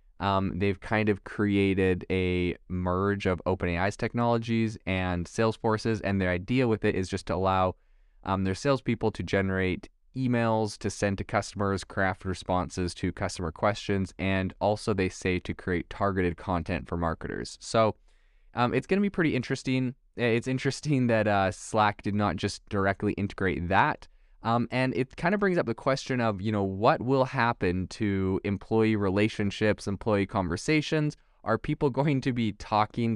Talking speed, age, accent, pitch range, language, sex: 165 wpm, 20-39, American, 95-120 Hz, English, male